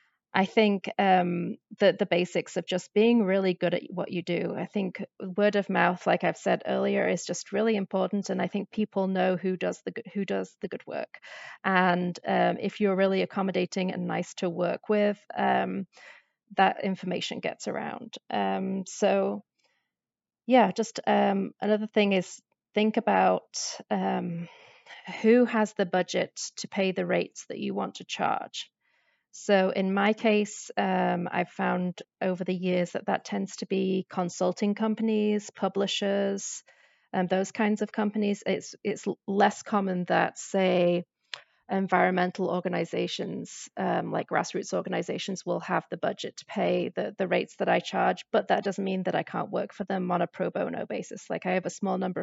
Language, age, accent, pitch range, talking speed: English, 30-49, British, 180-205 Hz, 170 wpm